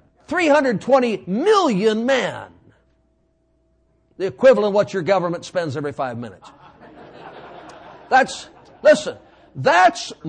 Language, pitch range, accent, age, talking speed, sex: English, 220-315 Hz, American, 50-69, 95 wpm, male